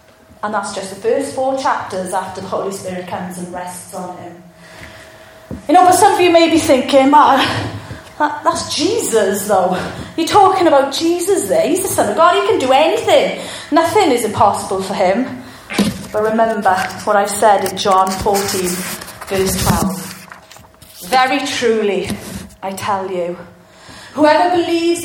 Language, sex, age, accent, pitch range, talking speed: English, female, 30-49, British, 195-300 Hz, 155 wpm